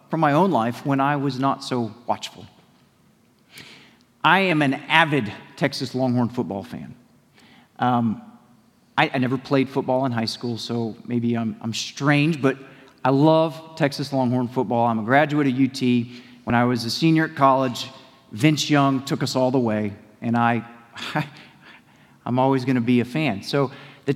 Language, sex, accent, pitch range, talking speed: English, male, American, 120-160 Hz, 160 wpm